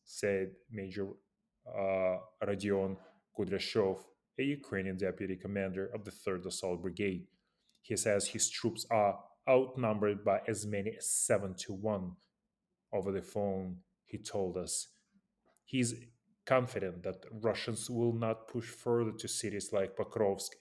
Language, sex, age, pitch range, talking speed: English, male, 20-39, 95-115 Hz, 130 wpm